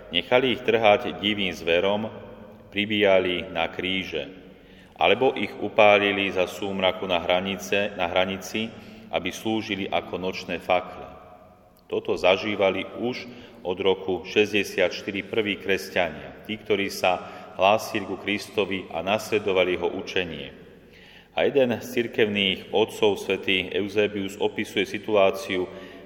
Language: Slovak